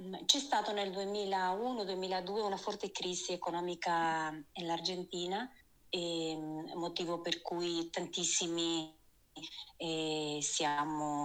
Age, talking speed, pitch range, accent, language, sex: 30-49, 80 wpm, 160-185 Hz, native, Italian, female